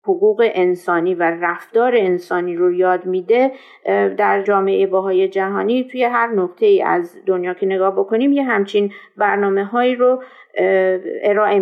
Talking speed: 135 wpm